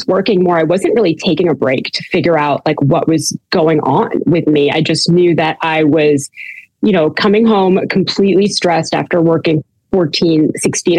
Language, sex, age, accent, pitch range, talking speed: English, female, 30-49, American, 155-185 Hz, 185 wpm